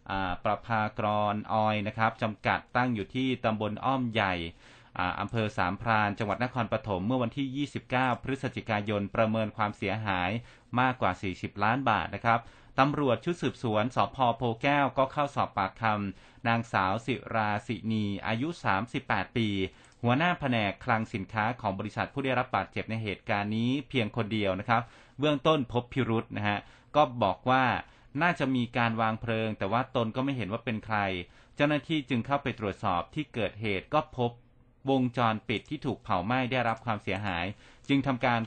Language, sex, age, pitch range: Thai, male, 30-49, 105-130 Hz